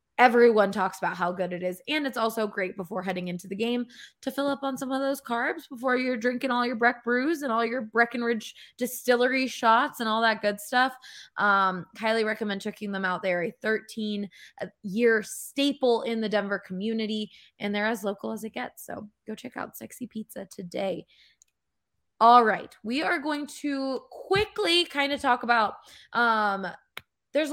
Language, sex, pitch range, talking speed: English, female, 205-250 Hz, 185 wpm